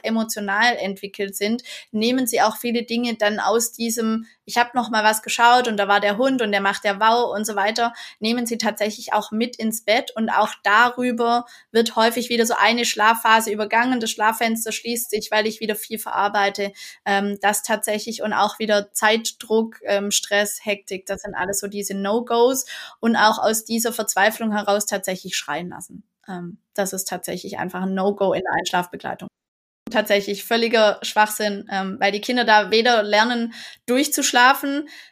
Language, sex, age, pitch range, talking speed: German, female, 20-39, 200-230 Hz, 170 wpm